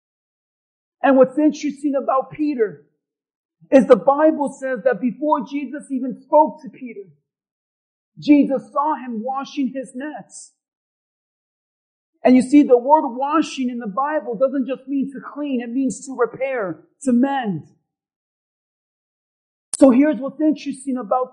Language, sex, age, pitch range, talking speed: English, male, 50-69, 250-295 Hz, 130 wpm